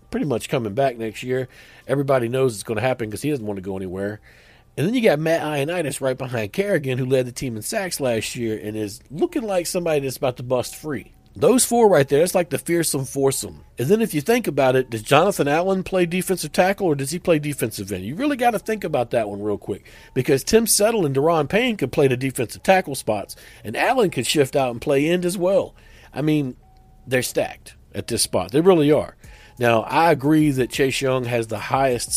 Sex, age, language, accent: male, 50-69, English, American